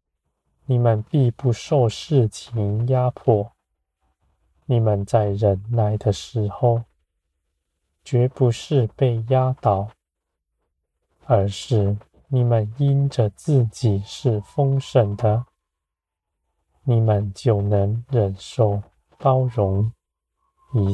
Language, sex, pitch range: Chinese, male, 85-120 Hz